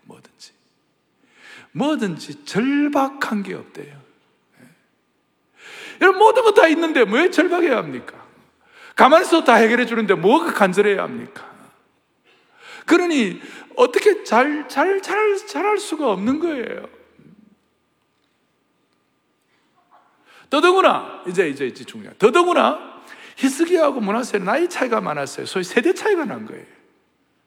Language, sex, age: Korean, male, 60-79